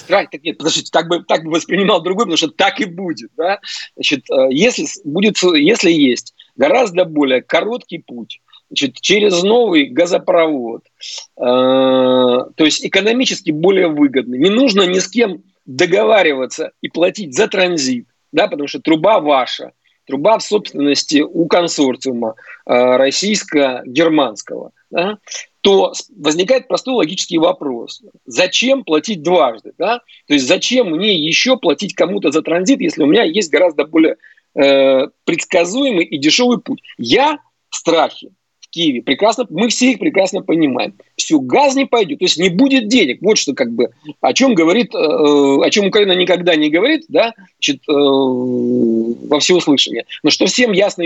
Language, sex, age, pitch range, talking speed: Russian, male, 40-59, 155-250 Hz, 145 wpm